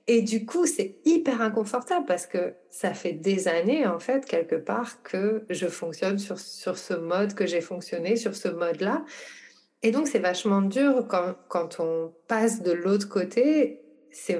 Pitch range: 190-240 Hz